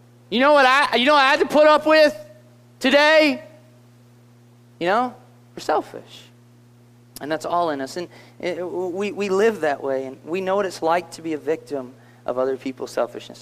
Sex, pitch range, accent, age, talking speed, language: male, 120-160 Hz, American, 30-49, 200 wpm, English